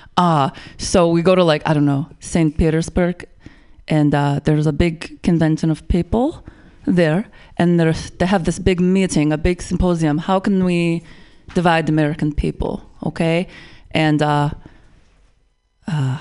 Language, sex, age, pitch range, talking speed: English, female, 20-39, 160-210 Hz, 155 wpm